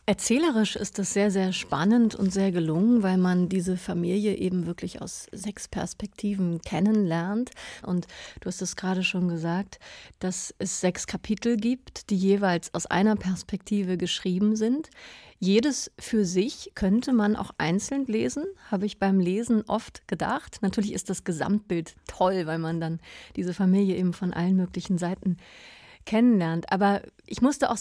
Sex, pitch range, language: female, 185-215 Hz, German